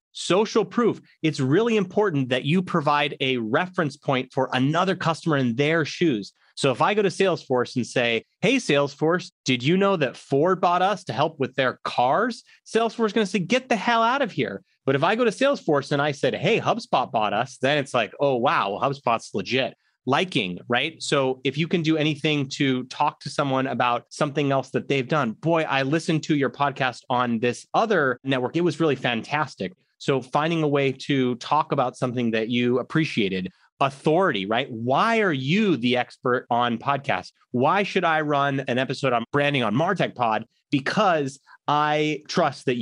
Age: 30-49